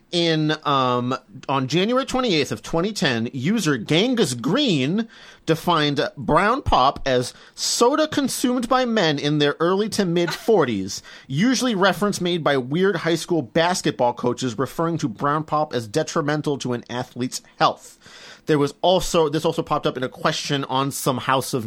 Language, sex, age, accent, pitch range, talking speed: English, male, 30-49, American, 130-175 Hz, 160 wpm